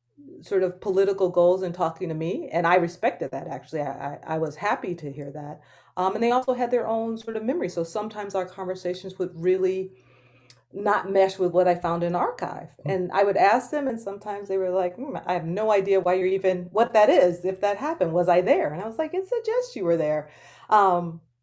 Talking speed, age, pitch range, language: 225 wpm, 40-59, 155-195 Hz, English